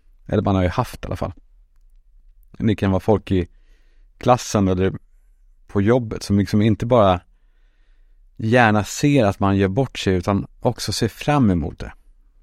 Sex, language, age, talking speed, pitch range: male, Swedish, 50-69, 165 wpm, 90-115 Hz